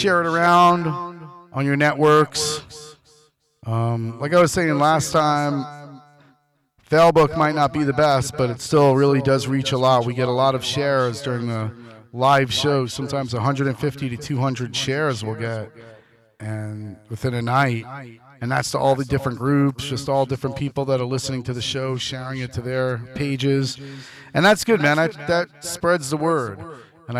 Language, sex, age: English, male, 40-59